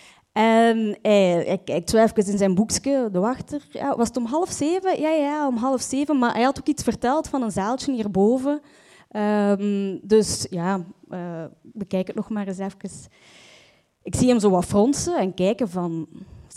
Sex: female